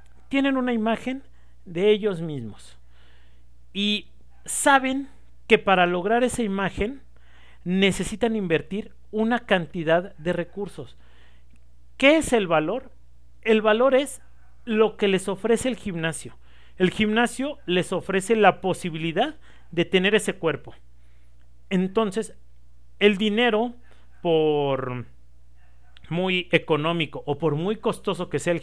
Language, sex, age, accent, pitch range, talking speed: Spanish, male, 40-59, Mexican, 150-215 Hz, 115 wpm